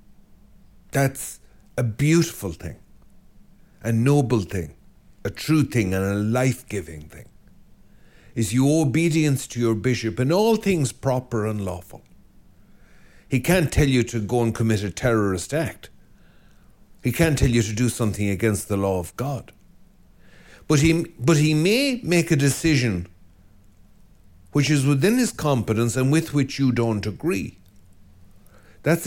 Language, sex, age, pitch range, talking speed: English, male, 60-79, 105-155 Hz, 140 wpm